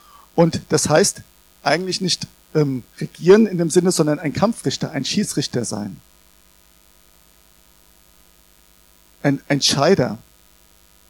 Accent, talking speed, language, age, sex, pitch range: German, 95 wpm, German, 50-69, male, 140-195 Hz